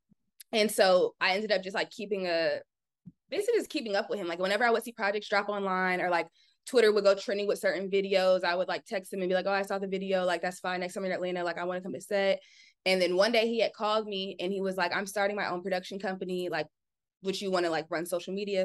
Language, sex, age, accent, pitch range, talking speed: English, female, 20-39, American, 180-210 Hz, 280 wpm